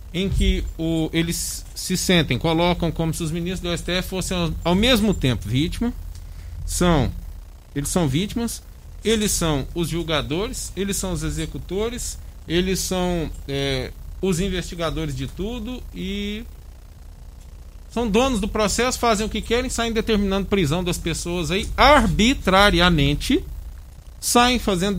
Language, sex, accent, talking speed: Portuguese, male, Brazilian, 130 wpm